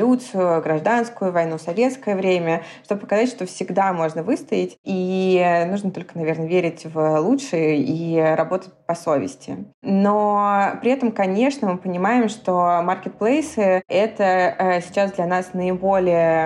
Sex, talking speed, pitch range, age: female, 125 wpm, 170-200 Hz, 20-39